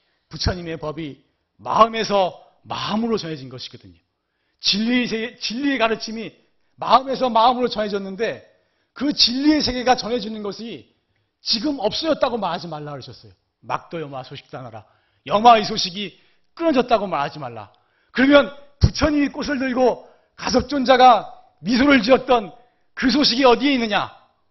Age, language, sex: 40-59, Korean, male